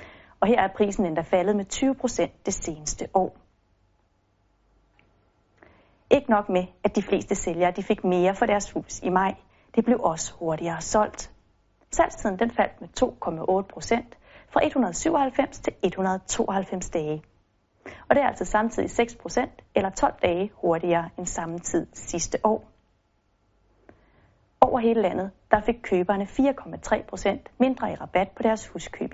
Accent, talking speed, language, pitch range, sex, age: native, 140 wpm, Danish, 175-245 Hz, female, 30-49